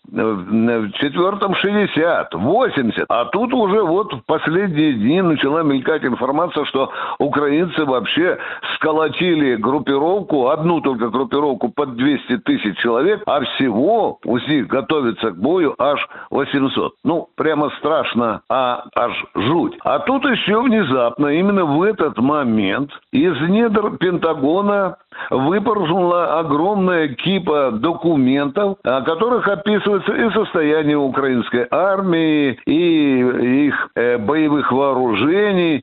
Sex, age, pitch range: male, 60-79, 135-185 Hz